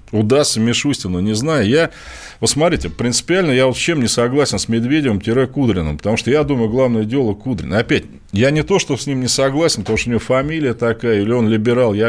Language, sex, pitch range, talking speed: Russian, male, 110-150 Hz, 215 wpm